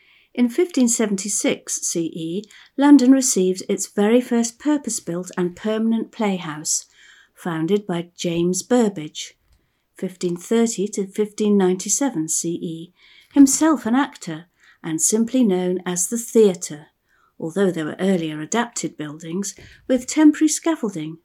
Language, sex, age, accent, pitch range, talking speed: English, female, 50-69, British, 175-235 Hz, 105 wpm